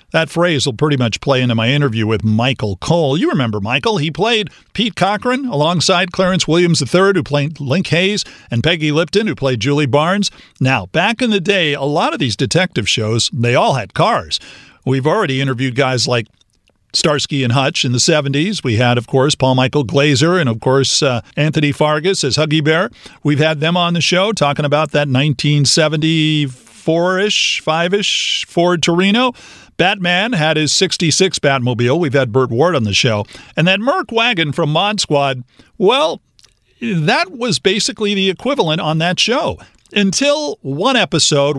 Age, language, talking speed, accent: 50-69, English, 175 wpm, American